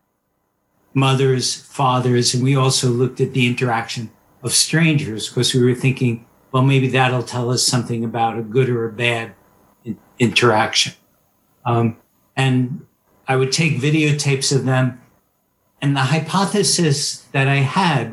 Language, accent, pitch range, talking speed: English, American, 120-140 Hz, 140 wpm